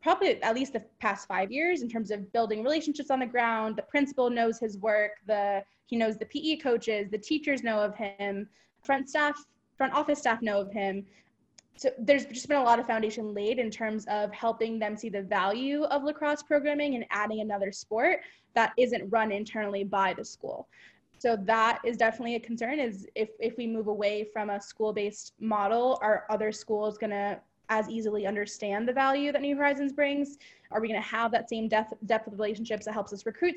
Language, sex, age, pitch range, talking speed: English, female, 10-29, 215-255 Hz, 205 wpm